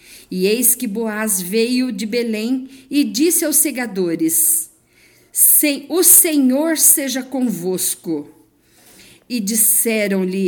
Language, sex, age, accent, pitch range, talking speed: Portuguese, female, 50-69, Brazilian, 205-265 Hz, 95 wpm